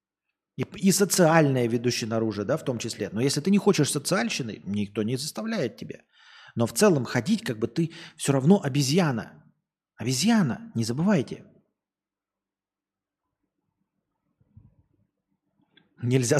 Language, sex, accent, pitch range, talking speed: Russian, male, native, 120-185 Hz, 120 wpm